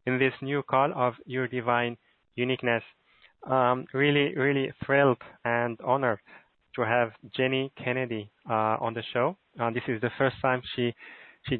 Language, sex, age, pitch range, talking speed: English, male, 20-39, 115-130 Hz, 155 wpm